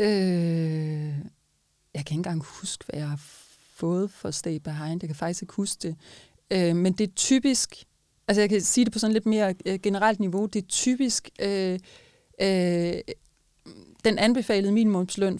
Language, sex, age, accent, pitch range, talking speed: Danish, female, 30-49, native, 170-200 Hz, 150 wpm